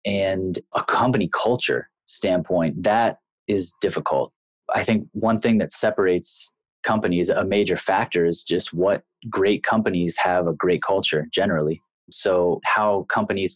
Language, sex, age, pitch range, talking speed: English, male, 20-39, 90-105 Hz, 135 wpm